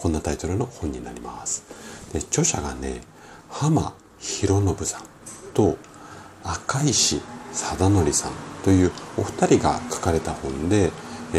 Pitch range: 75-105 Hz